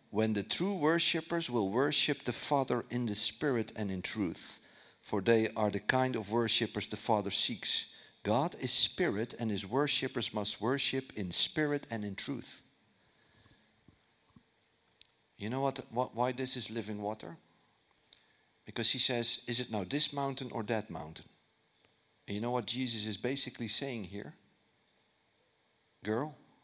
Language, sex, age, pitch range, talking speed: English, male, 50-69, 110-140 Hz, 150 wpm